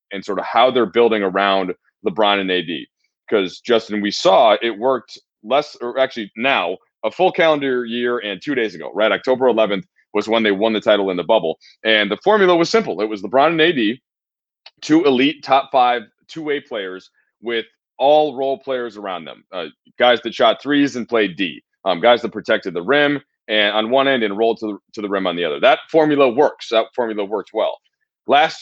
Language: English